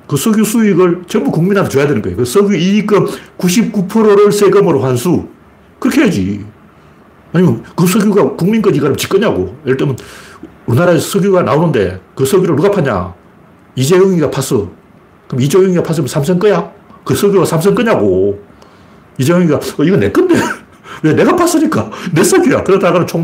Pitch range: 130-200 Hz